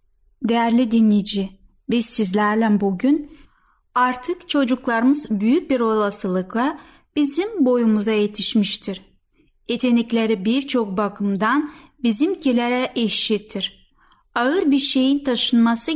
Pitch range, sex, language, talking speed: 210-270 Hz, female, Turkish, 85 wpm